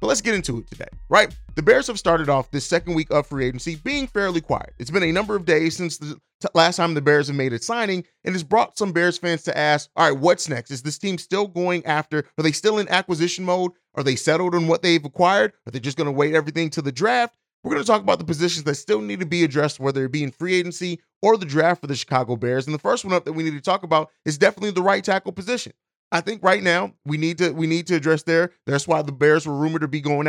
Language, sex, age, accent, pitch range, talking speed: English, male, 30-49, American, 150-180 Hz, 280 wpm